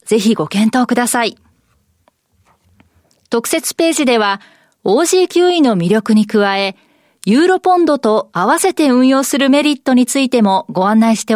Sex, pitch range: female, 215-295 Hz